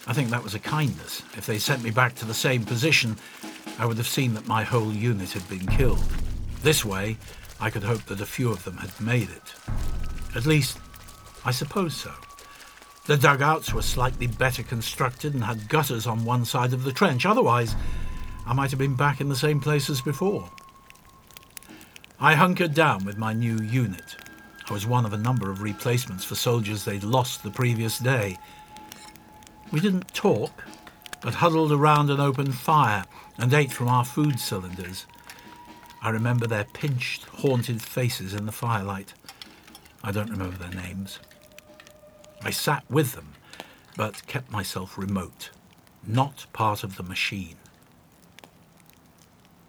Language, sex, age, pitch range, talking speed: English, male, 60-79, 100-135 Hz, 165 wpm